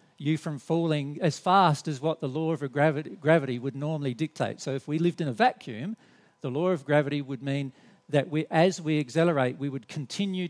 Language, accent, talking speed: English, Australian, 210 wpm